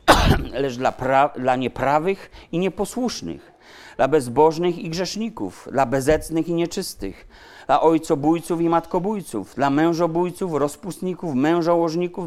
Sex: male